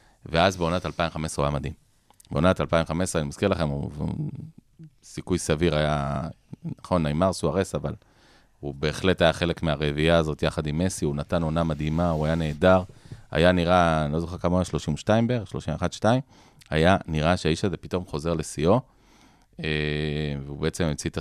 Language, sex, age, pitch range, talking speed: Hebrew, male, 30-49, 75-95 Hz, 160 wpm